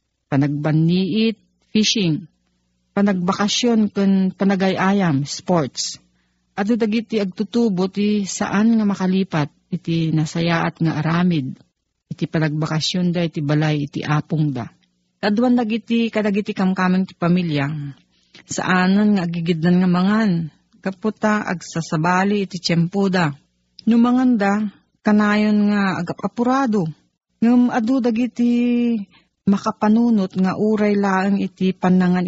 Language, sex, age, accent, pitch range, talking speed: Filipino, female, 40-59, native, 155-210 Hz, 100 wpm